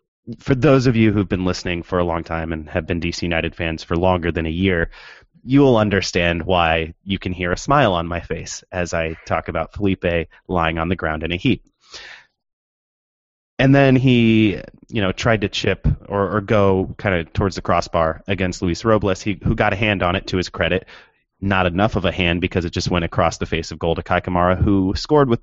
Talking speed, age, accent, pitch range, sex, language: 215 wpm, 30-49, American, 85-105 Hz, male, English